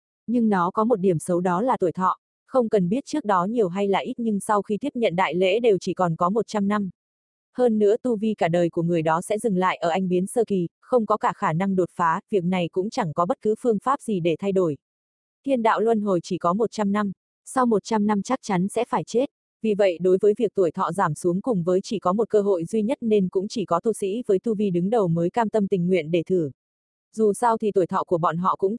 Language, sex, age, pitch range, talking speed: Vietnamese, female, 20-39, 180-225 Hz, 270 wpm